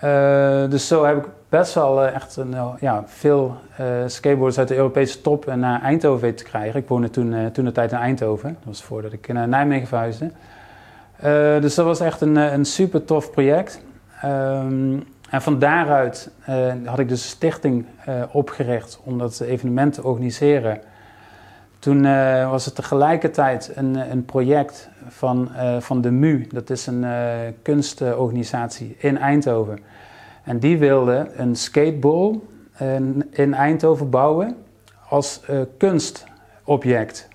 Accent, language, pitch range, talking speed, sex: Dutch, Dutch, 120-145 Hz, 155 wpm, male